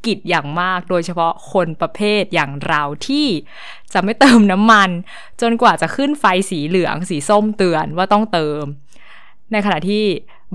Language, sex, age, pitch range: Thai, female, 20-39, 150-205 Hz